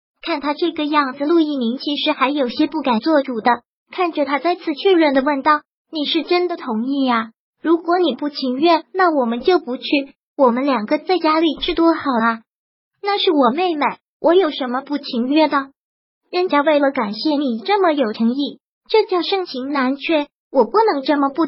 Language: Chinese